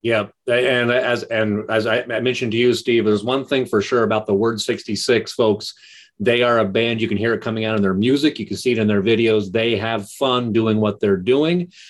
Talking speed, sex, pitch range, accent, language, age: 235 wpm, male, 110-155 Hz, American, English, 30-49